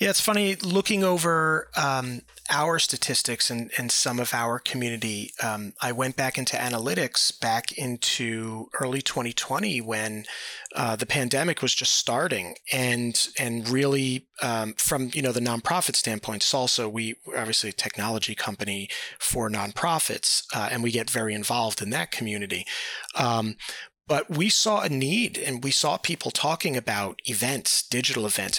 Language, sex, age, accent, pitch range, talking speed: English, male, 30-49, American, 115-150 Hz, 155 wpm